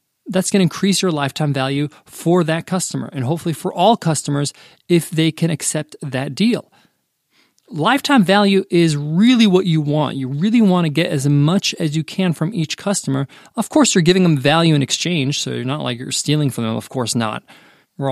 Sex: male